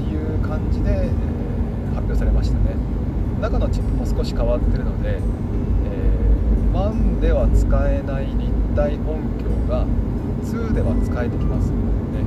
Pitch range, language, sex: 85-110 Hz, Japanese, male